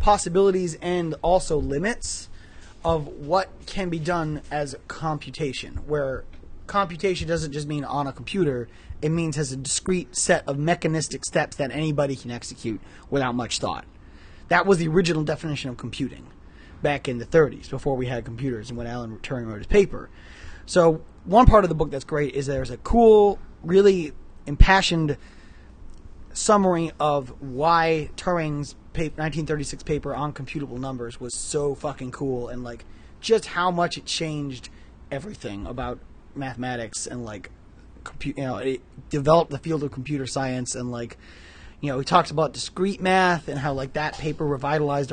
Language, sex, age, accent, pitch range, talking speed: English, male, 20-39, American, 125-165 Hz, 160 wpm